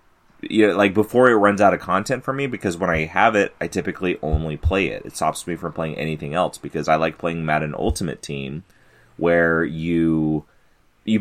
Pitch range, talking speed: 80-110 Hz, 210 wpm